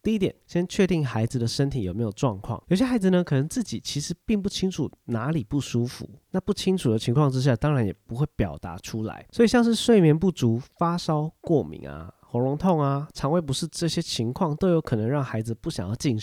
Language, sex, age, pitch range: Chinese, male, 30-49, 115-160 Hz